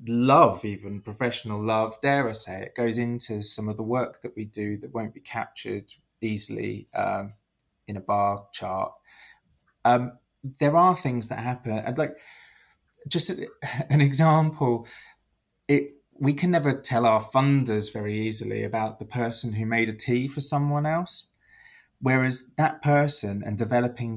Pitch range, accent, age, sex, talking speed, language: 110-140 Hz, British, 20-39, male, 155 wpm, English